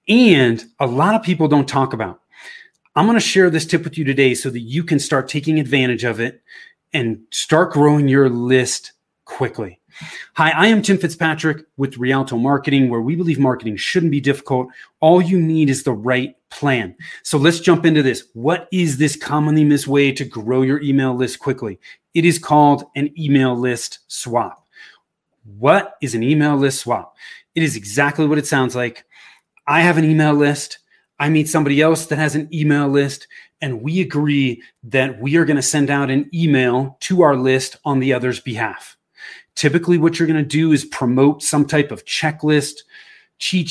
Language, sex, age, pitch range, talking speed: English, male, 30-49, 130-160 Hz, 190 wpm